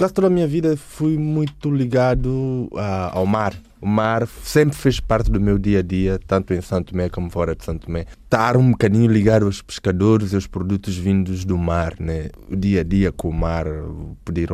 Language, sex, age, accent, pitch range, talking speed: Portuguese, male, 20-39, Brazilian, 95-125 Hz, 190 wpm